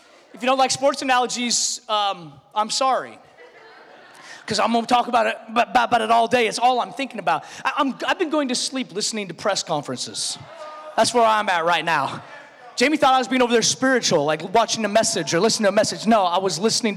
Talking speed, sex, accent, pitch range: 225 wpm, male, American, 240-310 Hz